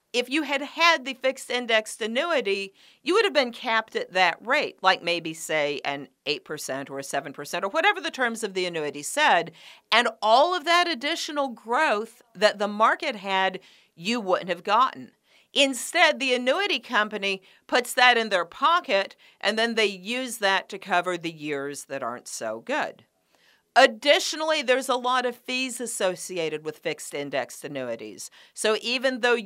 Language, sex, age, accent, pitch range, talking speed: English, female, 50-69, American, 190-270 Hz, 165 wpm